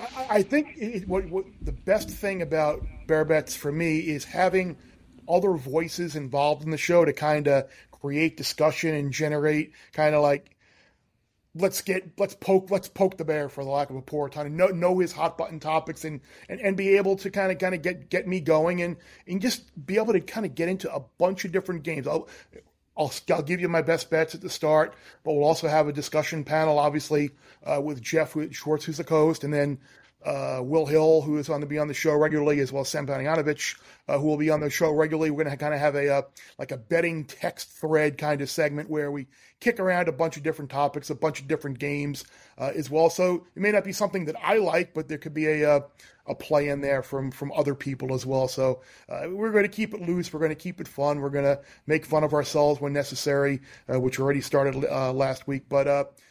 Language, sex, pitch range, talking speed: English, male, 145-175 Hz, 240 wpm